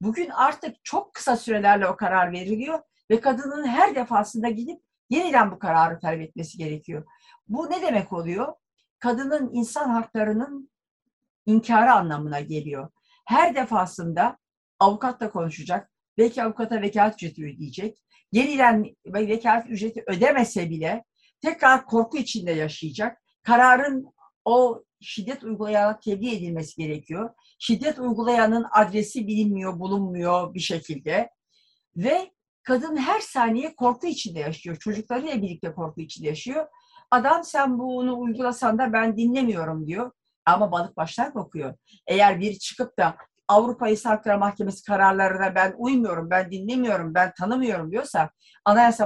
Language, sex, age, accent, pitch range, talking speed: Turkish, female, 50-69, native, 185-250 Hz, 125 wpm